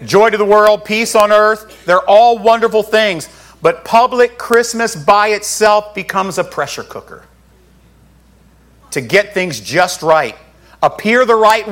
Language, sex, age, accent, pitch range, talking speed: English, male, 40-59, American, 155-230 Hz, 145 wpm